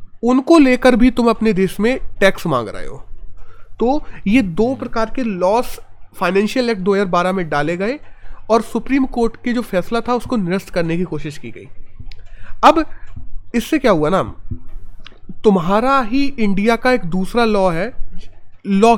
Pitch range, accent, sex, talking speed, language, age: 175-235 Hz, native, male, 170 wpm, Hindi, 30-49